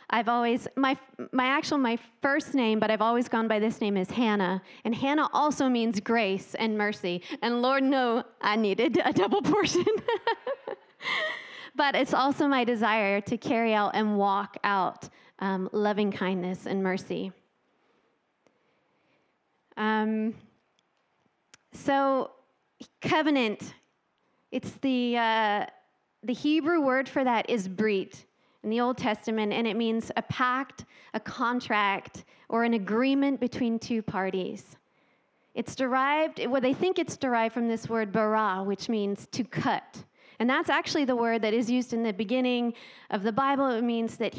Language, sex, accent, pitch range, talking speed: English, female, American, 215-270 Hz, 150 wpm